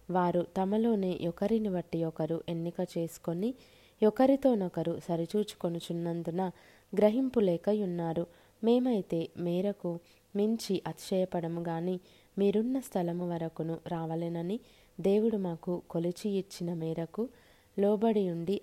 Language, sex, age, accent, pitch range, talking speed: Telugu, female, 20-39, native, 170-205 Hz, 85 wpm